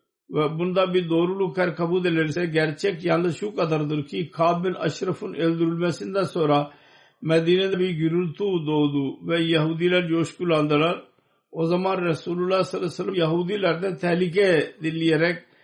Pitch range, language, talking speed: 160-185 Hz, Turkish, 125 wpm